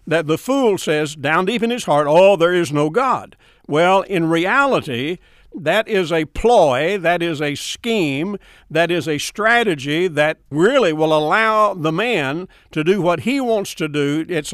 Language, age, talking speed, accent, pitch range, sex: English, 60-79, 180 wpm, American, 155-215 Hz, male